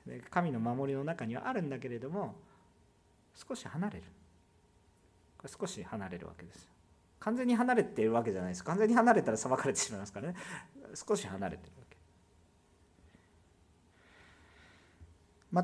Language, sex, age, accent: Japanese, male, 40-59, native